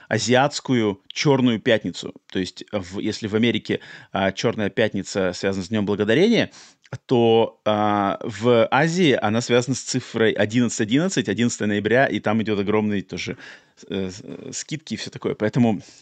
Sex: male